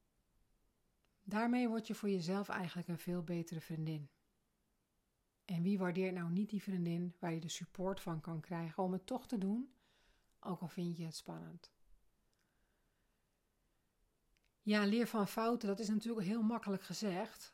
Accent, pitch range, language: Dutch, 175-215 Hz, Dutch